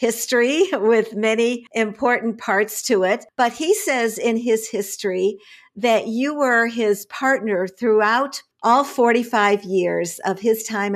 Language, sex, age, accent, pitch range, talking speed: English, female, 50-69, American, 200-250 Hz, 135 wpm